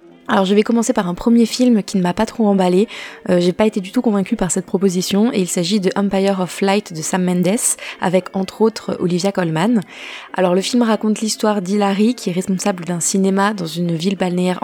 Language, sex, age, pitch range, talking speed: French, female, 20-39, 180-210 Hz, 220 wpm